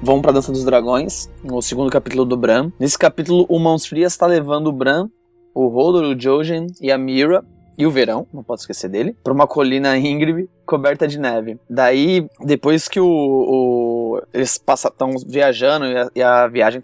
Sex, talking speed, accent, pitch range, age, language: male, 190 wpm, Brazilian, 130-170 Hz, 20-39, Portuguese